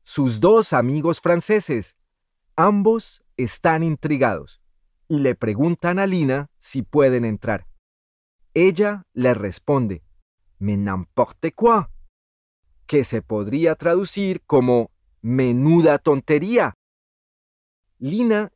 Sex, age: male, 30-49